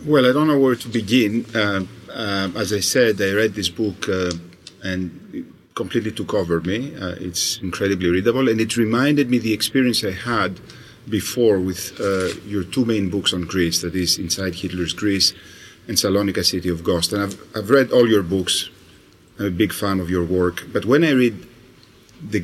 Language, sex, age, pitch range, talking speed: Greek, male, 40-59, 95-120 Hz, 200 wpm